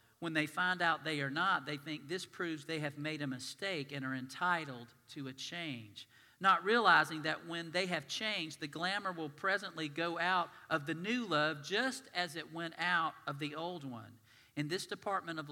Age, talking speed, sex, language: 50-69, 200 wpm, male, English